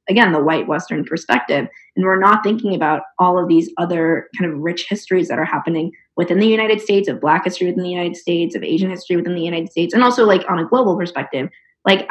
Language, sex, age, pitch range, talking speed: English, female, 20-39, 170-215 Hz, 235 wpm